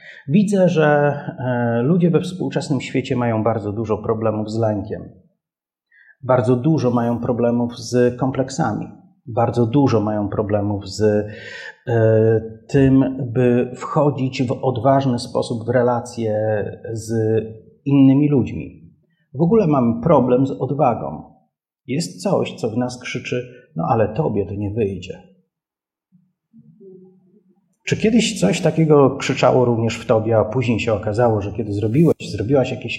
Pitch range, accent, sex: 115-155 Hz, native, male